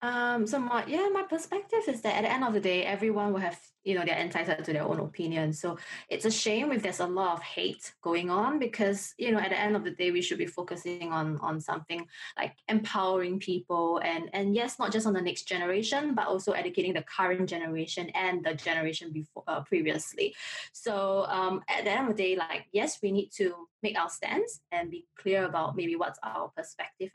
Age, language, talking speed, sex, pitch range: 20-39, English, 225 wpm, female, 165-215 Hz